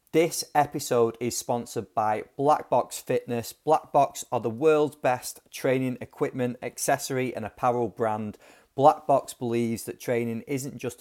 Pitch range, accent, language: 115-130 Hz, British, English